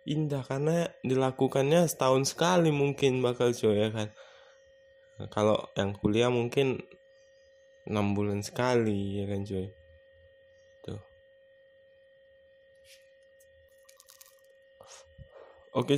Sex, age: male, 20-39